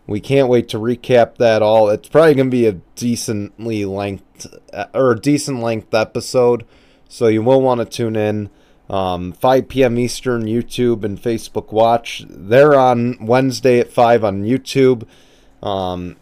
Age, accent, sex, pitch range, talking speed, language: 30-49, American, male, 100-125 Hz, 160 wpm, English